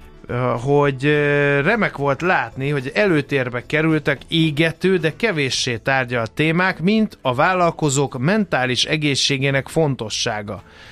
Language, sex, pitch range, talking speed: Hungarian, male, 125-165 Hz, 105 wpm